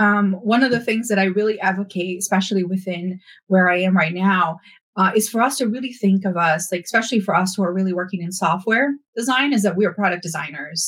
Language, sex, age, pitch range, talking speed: English, female, 30-49, 185-215 Hz, 225 wpm